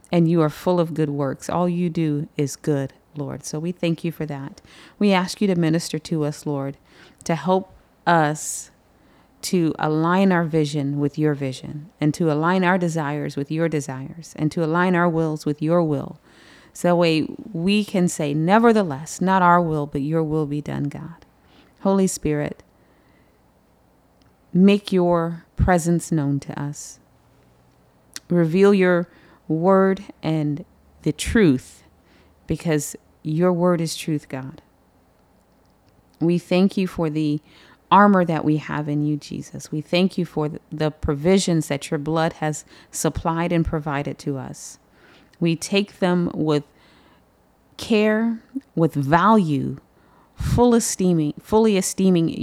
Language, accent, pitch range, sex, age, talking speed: English, American, 150-180 Hz, female, 40-59, 145 wpm